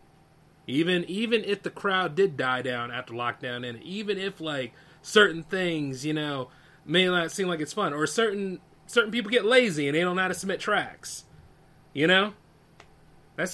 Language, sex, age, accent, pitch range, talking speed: English, male, 30-49, American, 145-195 Hz, 180 wpm